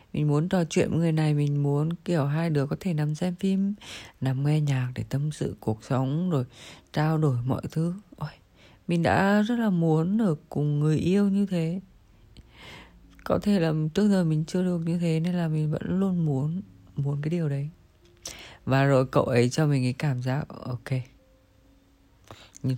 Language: Vietnamese